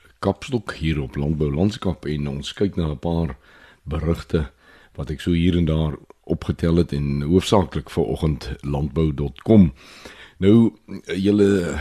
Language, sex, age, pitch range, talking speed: Swedish, male, 60-79, 70-90 Hz, 125 wpm